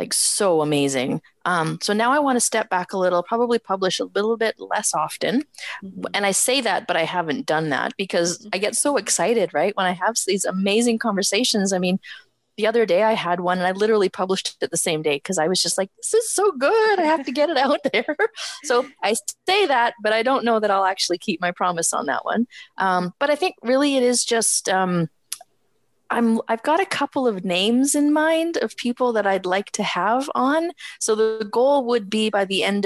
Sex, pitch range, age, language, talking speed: female, 185-245 Hz, 20-39, English, 225 wpm